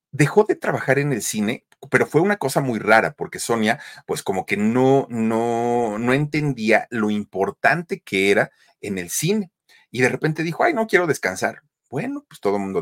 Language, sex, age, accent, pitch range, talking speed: Spanish, male, 40-59, Mexican, 100-145 Hz, 190 wpm